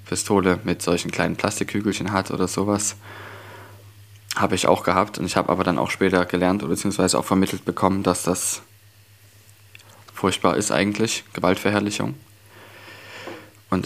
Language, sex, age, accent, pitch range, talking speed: German, male, 20-39, German, 90-105 Hz, 140 wpm